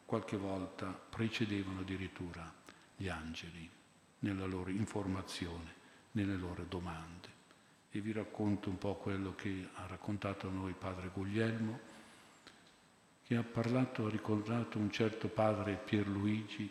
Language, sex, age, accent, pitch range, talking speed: Italian, male, 50-69, native, 90-105 Hz, 120 wpm